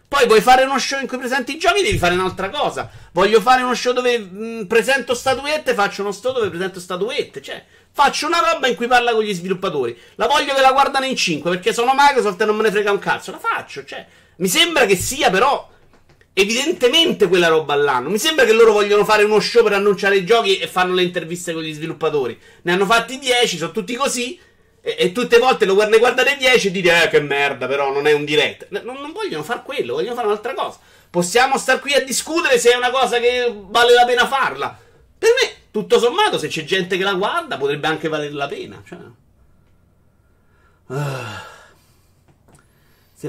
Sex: male